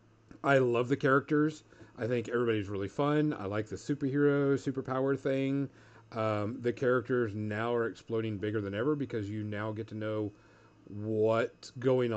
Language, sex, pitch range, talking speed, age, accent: English, male, 110-140 Hz, 160 wpm, 40-59, American